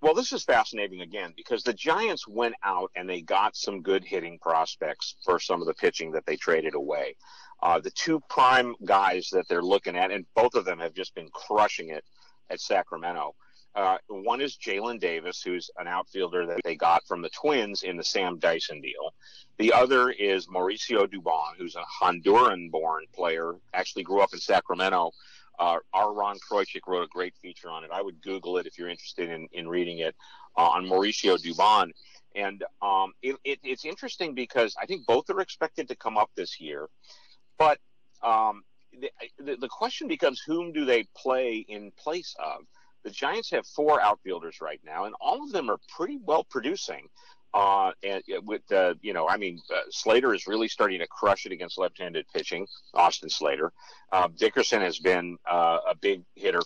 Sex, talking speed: male, 190 wpm